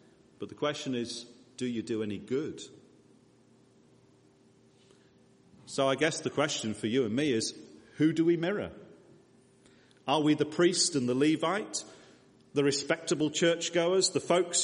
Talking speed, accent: 145 wpm, British